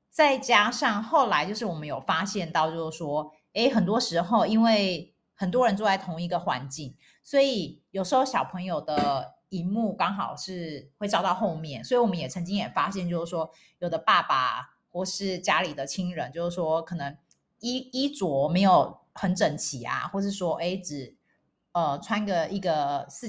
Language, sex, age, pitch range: Chinese, female, 30-49, 165-215 Hz